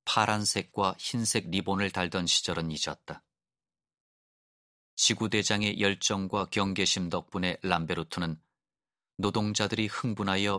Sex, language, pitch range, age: male, Korean, 85-100 Hz, 30-49